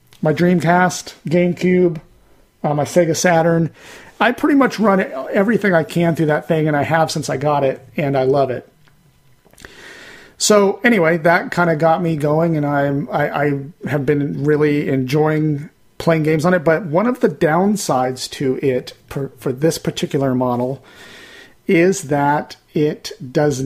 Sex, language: male, English